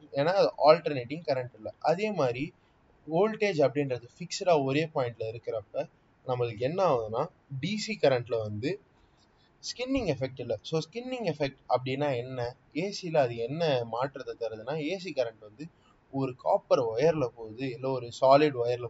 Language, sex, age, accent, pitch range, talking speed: Tamil, male, 20-39, native, 125-170 Hz, 135 wpm